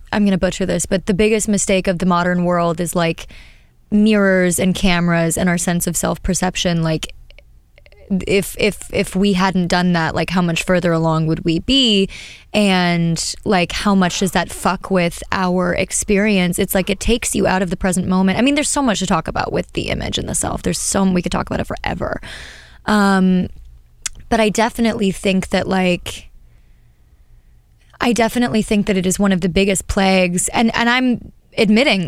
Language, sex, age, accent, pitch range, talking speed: English, female, 20-39, American, 175-210 Hz, 195 wpm